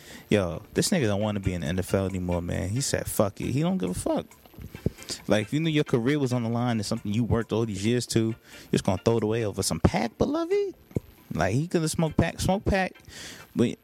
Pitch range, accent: 90-120 Hz, American